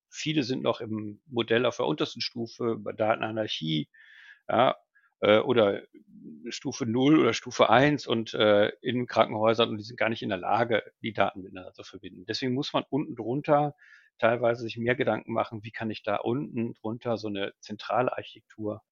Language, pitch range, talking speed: German, 110-130 Hz, 170 wpm